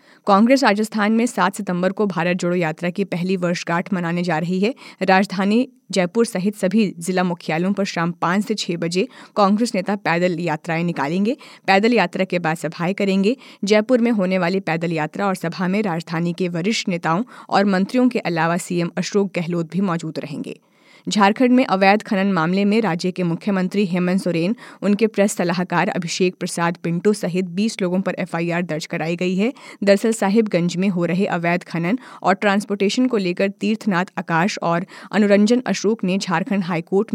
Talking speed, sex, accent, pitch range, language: 175 wpm, female, native, 175-210 Hz, Hindi